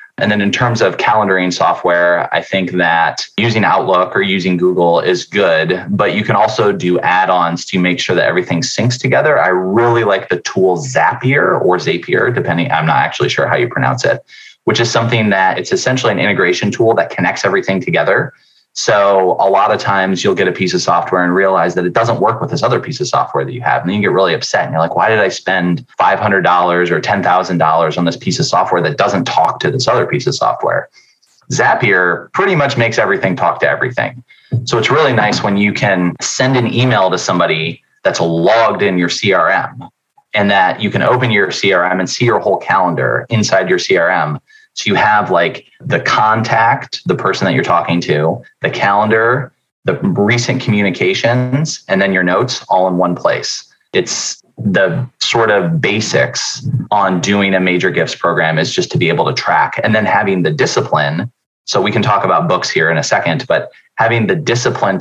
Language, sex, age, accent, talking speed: English, male, 20-39, American, 200 wpm